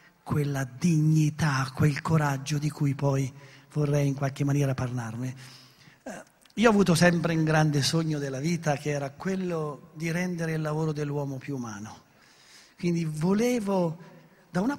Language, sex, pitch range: Italian, male, 140-175 Hz